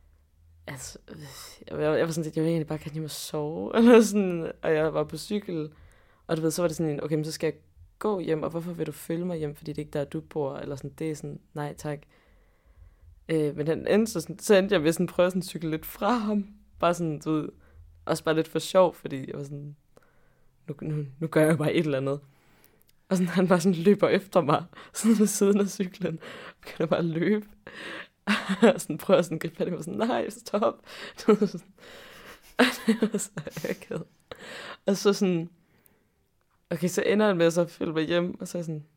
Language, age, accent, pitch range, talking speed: Danish, 20-39, native, 150-190 Hz, 235 wpm